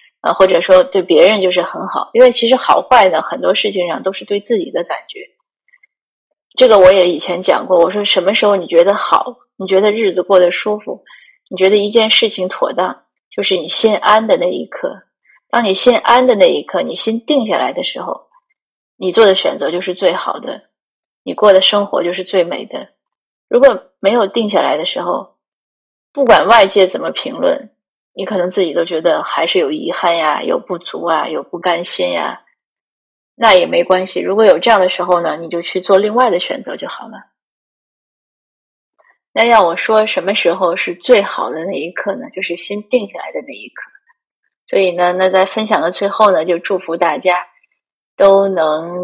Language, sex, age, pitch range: Chinese, female, 20-39, 180-230 Hz